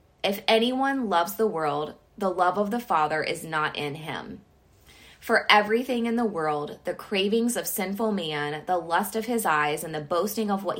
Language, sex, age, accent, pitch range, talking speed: English, female, 20-39, American, 160-220 Hz, 190 wpm